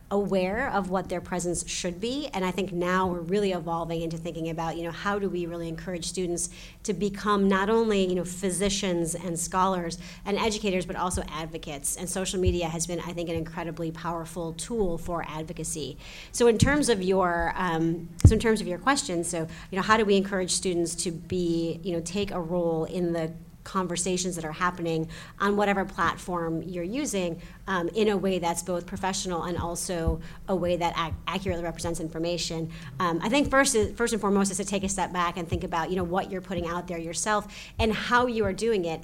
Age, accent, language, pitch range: 30-49, American, English, 170-200 Hz